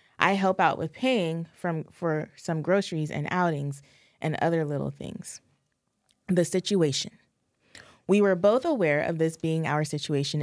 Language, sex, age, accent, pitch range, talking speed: English, female, 20-39, American, 150-185 Hz, 150 wpm